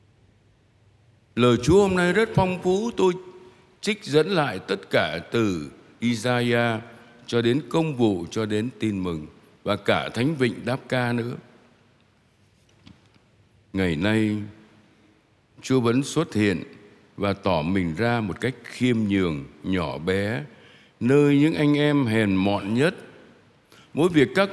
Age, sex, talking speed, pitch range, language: 60-79, male, 135 wpm, 105-130 Hz, Vietnamese